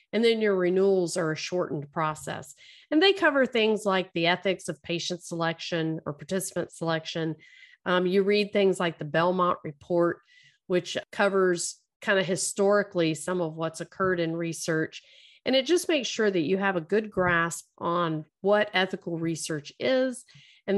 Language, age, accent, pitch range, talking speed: English, 40-59, American, 170-225 Hz, 165 wpm